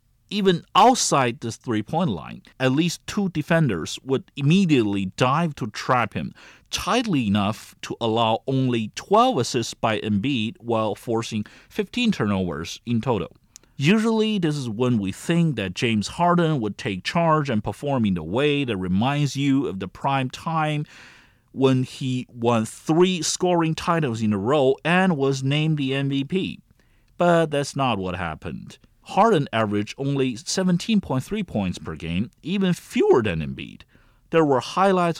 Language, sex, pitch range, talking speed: English, male, 110-160 Hz, 150 wpm